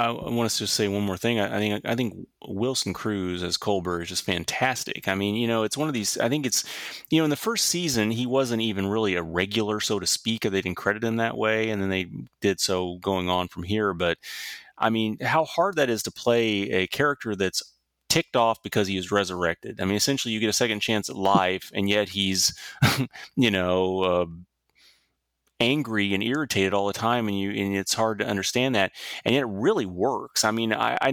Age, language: 30-49, English